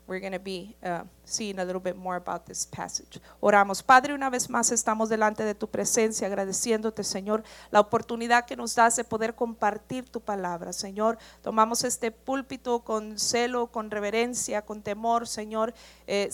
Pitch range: 200-235 Hz